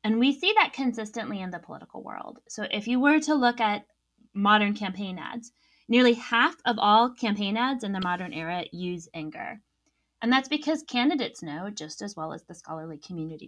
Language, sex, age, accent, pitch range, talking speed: English, female, 20-39, American, 185-245 Hz, 190 wpm